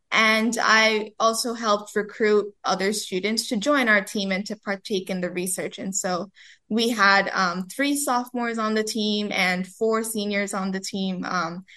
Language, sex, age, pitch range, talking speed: English, female, 10-29, 195-225 Hz, 175 wpm